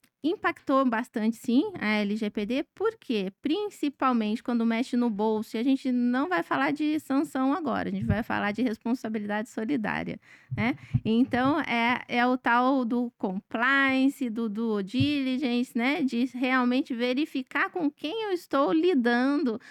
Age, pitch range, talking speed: 20-39, 220-280 Hz, 140 wpm